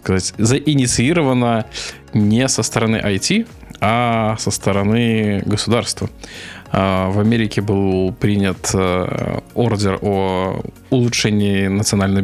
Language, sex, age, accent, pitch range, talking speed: Russian, male, 20-39, native, 95-120 Hz, 90 wpm